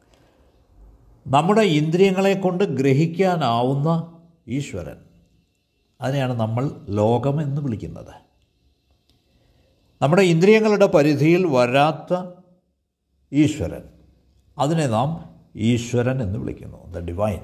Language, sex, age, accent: Malayalam, male, 60-79, native